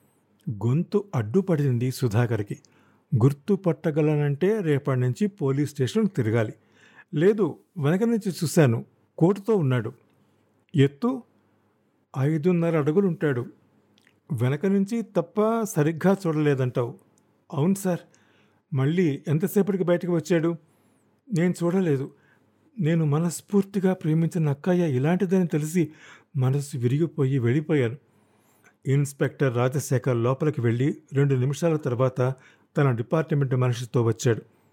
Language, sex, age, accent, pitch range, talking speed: Telugu, male, 50-69, native, 130-170 Hz, 90 wpm